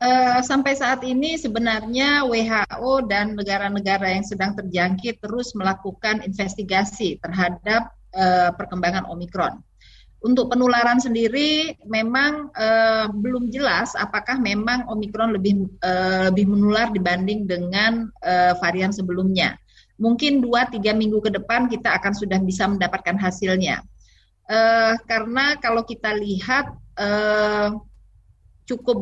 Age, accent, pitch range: 30-49, native, 185-230 Hz